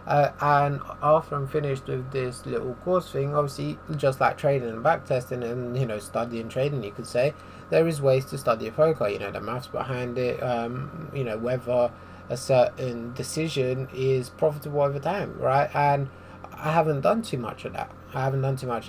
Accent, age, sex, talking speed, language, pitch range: British, 20-39, male, 195 wpm, English, 120-145 Hz